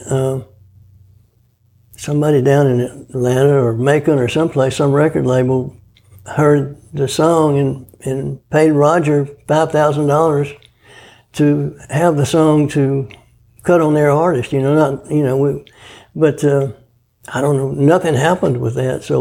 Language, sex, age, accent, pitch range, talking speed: English, male, 60-79, American, 120-150 Hz, 145 wpm